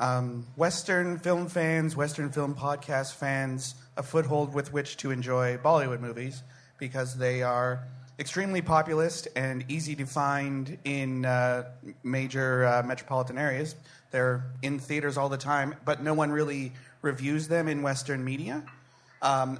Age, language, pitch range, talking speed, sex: 30-49, English, 130-150 Hz, 145 wpm, male